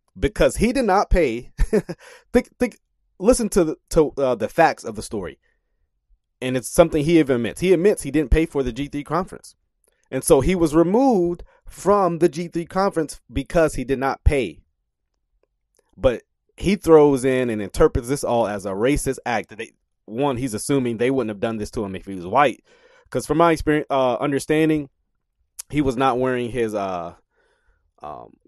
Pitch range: 105-150 Hz